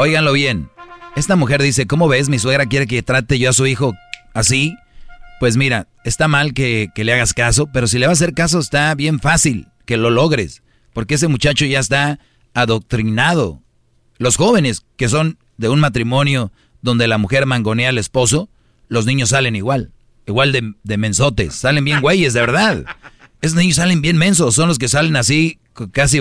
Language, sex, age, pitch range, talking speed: Spanish, male, 40-59, 120-155 Hz, 190 wpm